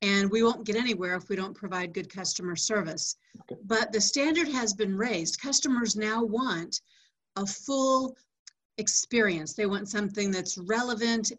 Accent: American